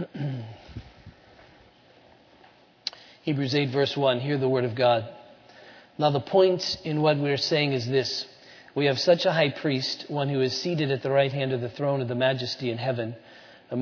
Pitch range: 130-145 Hz